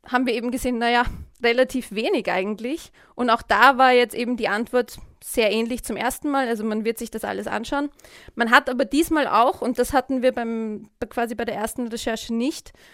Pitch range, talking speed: 230-265 Hz, 205 wpm